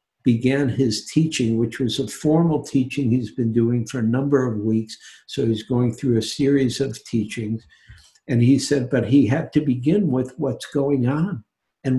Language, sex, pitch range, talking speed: English, male, 120-145 Hz, 185 wpm